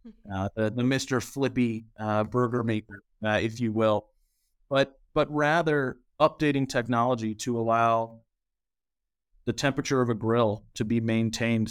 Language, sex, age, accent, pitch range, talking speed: English, male, 30-49, American, 110-130 Hz, 140 wpm